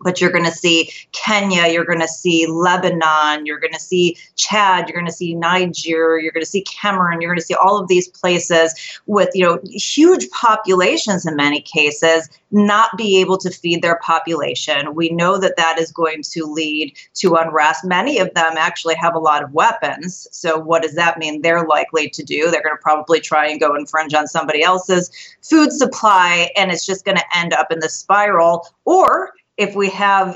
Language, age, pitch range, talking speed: English, 30-49, 165-205 Hz, 205 wpm